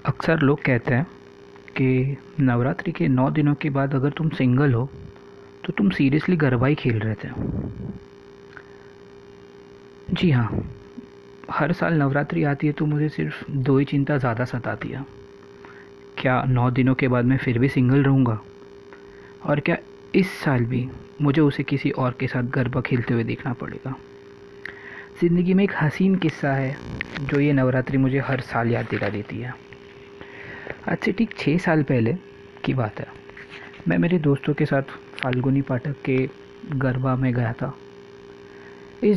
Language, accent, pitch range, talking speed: Hindi, native, 125-155 Hz, 155 wpm